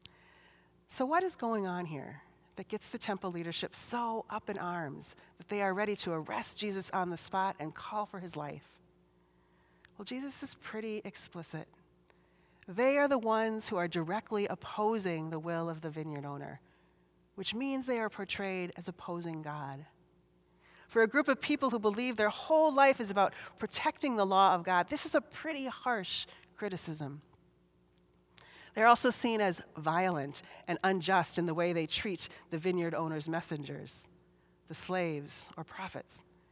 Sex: female